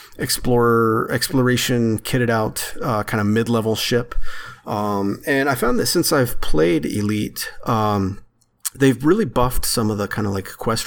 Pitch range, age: 105-125 Hz, 30-49